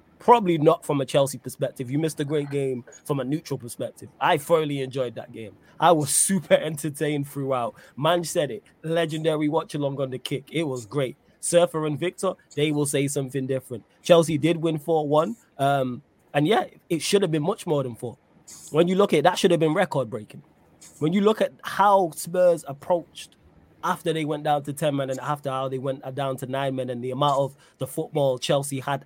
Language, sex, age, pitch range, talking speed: English, male, 20-39, 135-170 Hz, 205 wpm